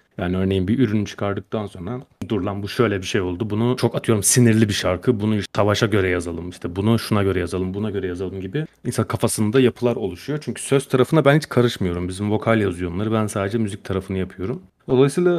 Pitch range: 100-135 Hz